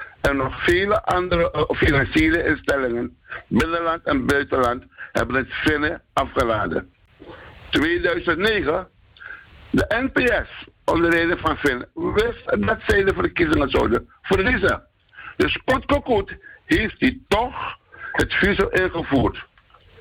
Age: 60-79